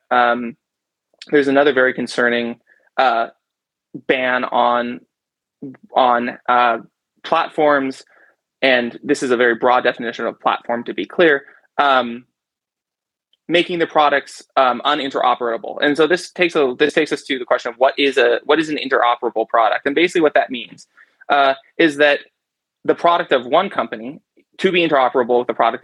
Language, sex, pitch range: English, male, 120-145 Hz